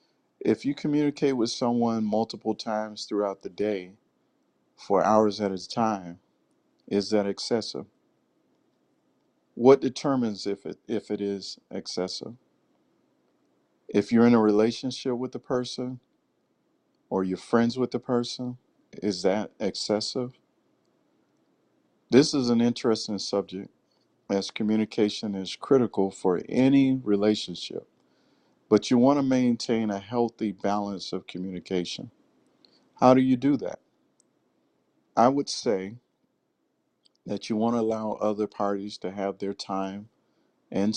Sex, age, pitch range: male, 50-69, 100-120 Hz